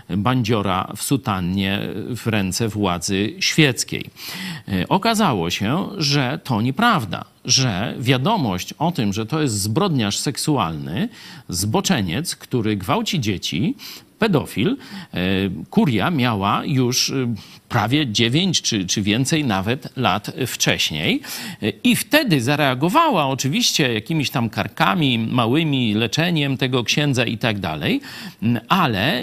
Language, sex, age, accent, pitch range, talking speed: Polish, male, 50-69, native, 115-160 Hz, 105 wpm